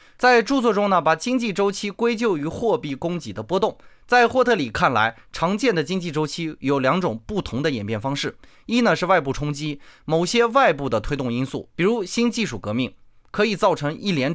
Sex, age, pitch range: male, 20-39, 135-215 Hz